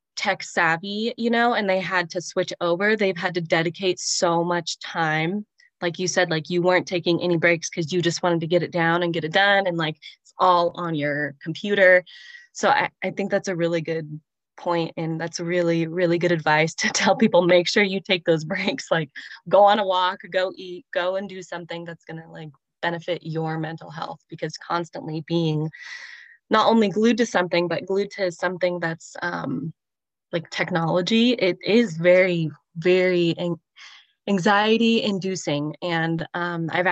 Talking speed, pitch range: 185 wpm, 160-185 Hz